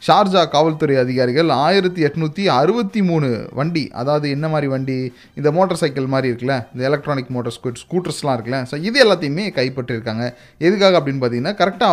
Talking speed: 135 wpm